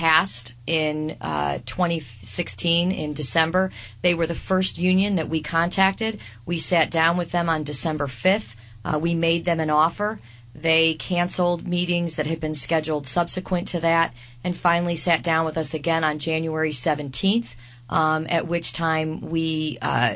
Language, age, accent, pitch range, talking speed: English, 40-59, American, 150-175 Hz, 160 wpm